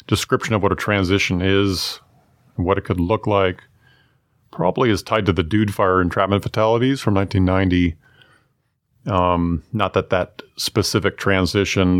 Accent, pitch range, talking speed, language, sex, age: American, 95-115 Hz, 140 wpm, English, male, 40-59